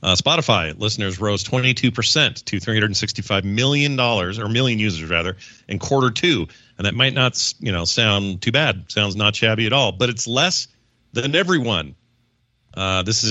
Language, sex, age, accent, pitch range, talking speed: English, male, 40-59, American, 100-125 Hz, 165 wpm